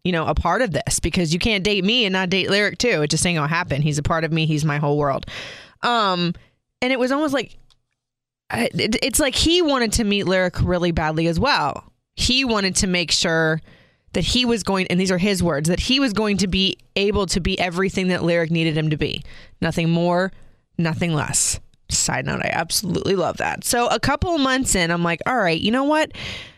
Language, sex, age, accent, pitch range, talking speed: English, female, 20-39, American, 165-240 Hz, 225 wpm